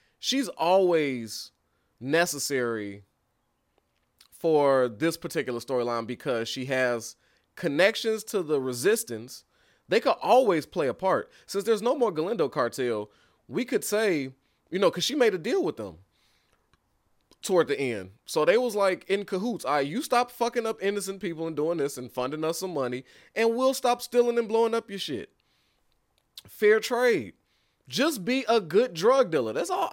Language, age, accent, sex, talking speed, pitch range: English, 20-39, American, male, 160 wpm, 140-230 Hz